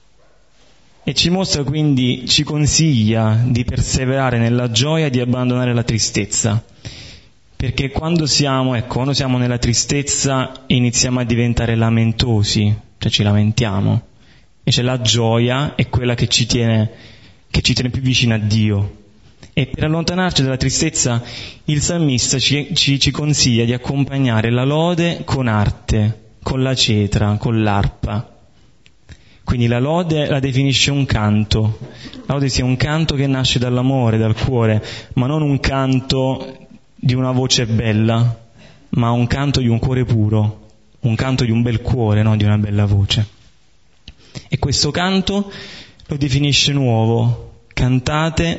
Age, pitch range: 20-39, 110-135 Hz